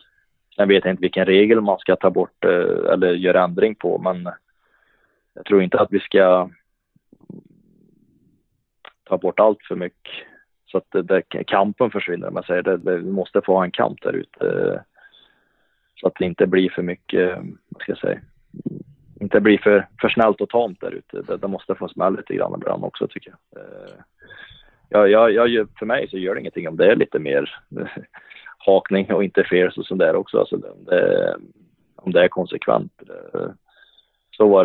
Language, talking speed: Swedish, 175 wpm